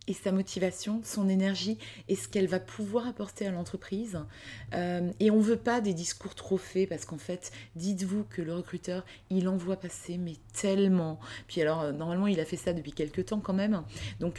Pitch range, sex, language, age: 160-195 Hz, female, French, 20-39